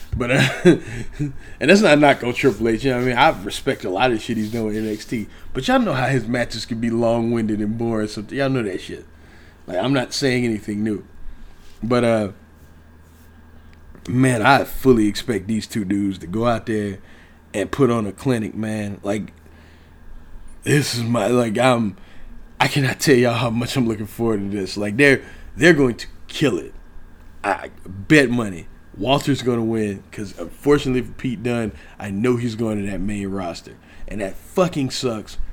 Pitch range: 95-125 Hz